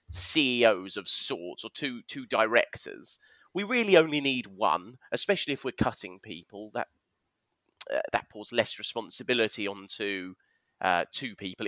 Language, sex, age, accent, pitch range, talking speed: English, male, 20-39, British, 105-140 Hz, 140 wpm